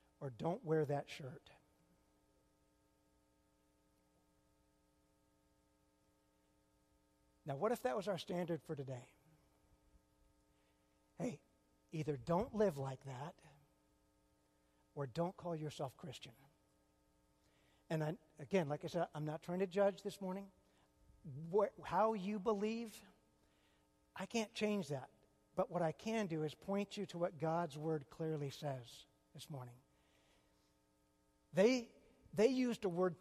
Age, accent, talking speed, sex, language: 60-79, American, 120 wpm, male, English